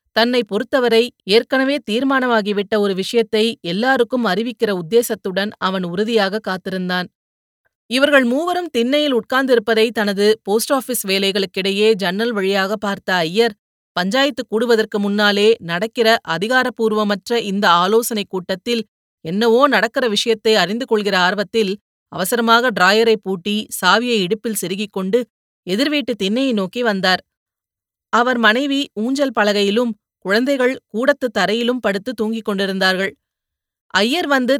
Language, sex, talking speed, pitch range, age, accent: Tamil, female, 105 wpm, 195-240 Hz, 30-49, native